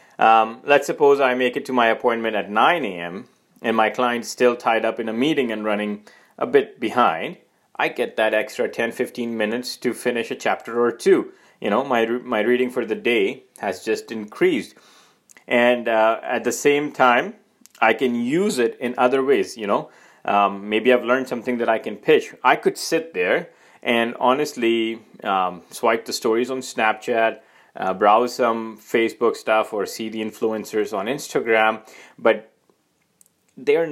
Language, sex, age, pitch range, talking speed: English, male, 30-49, 110-125 Hz, 175 wpm